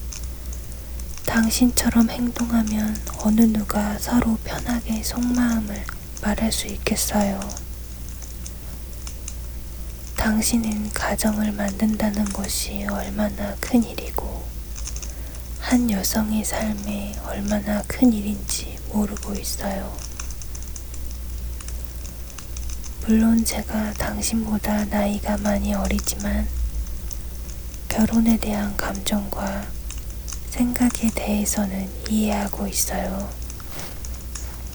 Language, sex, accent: Korean, female, native